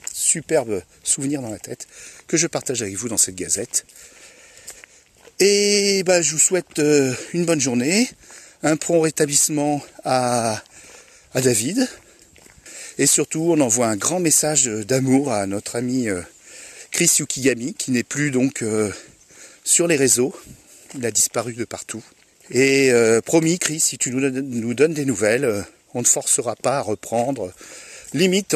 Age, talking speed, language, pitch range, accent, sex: 40-59, 145 wpm, French, 110-155 Hz, French, male